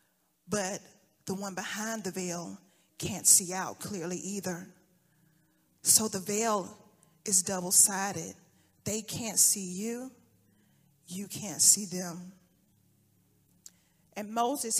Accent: American